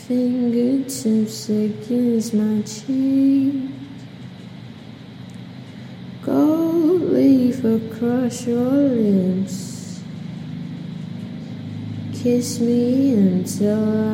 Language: English